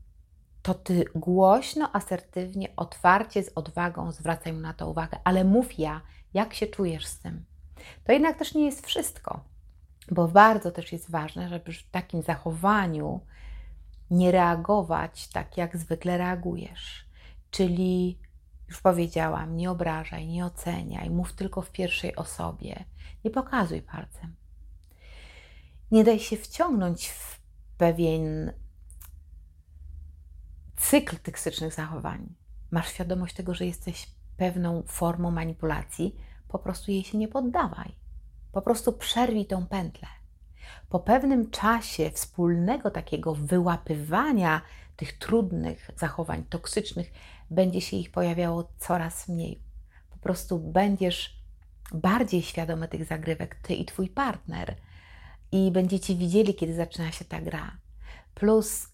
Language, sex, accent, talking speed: Polish, female, native, 120 wpm